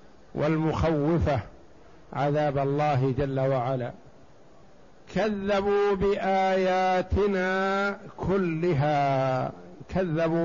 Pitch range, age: 150-175 Hz, 60-79